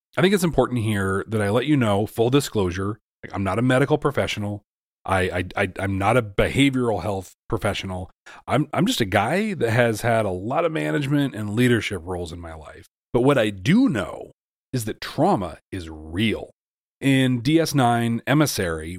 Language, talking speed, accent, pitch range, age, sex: English, 180 wpm, American, 100-140 Hz, 30-49, male